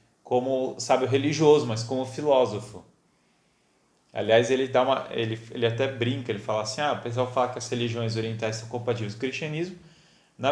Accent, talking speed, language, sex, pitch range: Brazilian, 175 wpm, Portuguese, male, 115-145 Hz